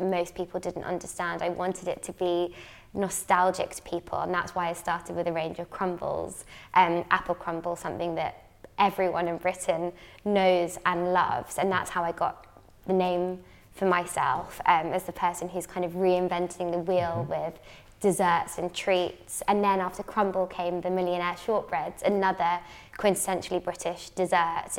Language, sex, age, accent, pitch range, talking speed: English, female, 20-39, British, 175-190 Hz, 165 wpm